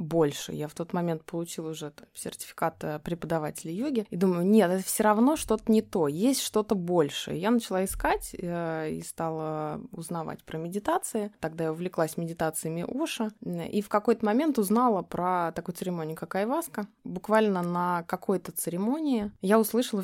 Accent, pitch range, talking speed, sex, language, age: native, 175-220 Hz, 155 wpm, female, Russian, 20-39